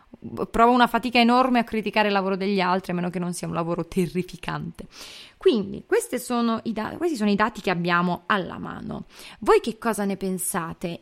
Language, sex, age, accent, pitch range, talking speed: Italian, female, 20-39, native, 185-235 Hz, 195 wpm